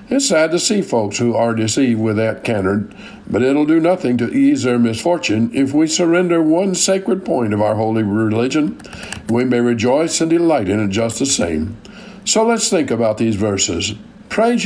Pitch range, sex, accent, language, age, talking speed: 110-160 Hz, male, American, English, 60-79, 190 wpm